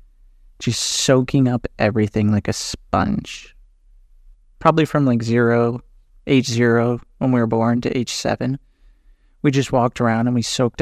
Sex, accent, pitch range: male, American, 105-130 Hz